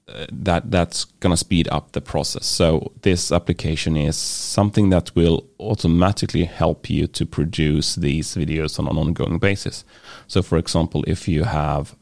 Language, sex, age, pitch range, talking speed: English, male, 30-49, 80-100 Hz, 160 wpm